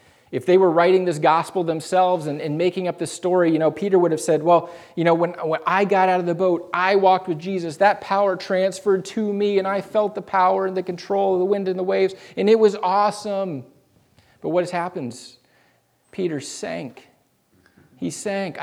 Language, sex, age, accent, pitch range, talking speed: English, male, 40-59, American, 155-190 Hz, 210 wpm